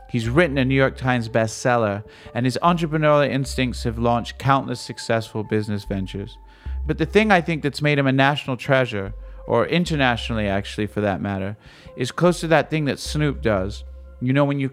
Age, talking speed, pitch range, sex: 40-59, 190 wpm, 105-130 Hz, male